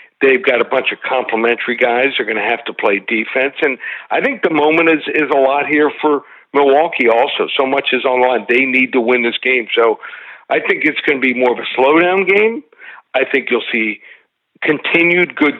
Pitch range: 125-155 Hz